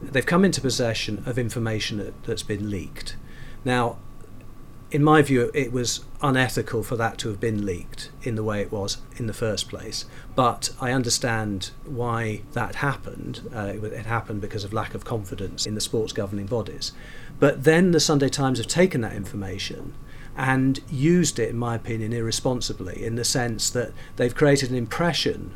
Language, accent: English, British